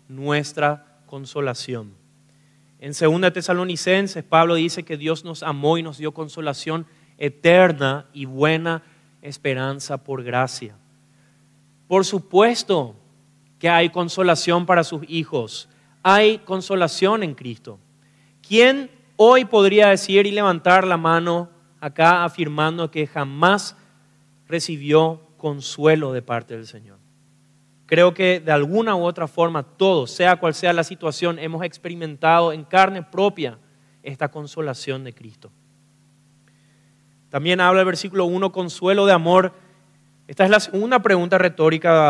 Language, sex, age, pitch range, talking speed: Spanish, male, 30-49, 145-180 Hz, 125 wpm